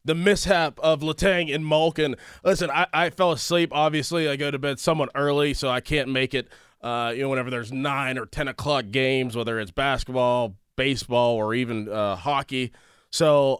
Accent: American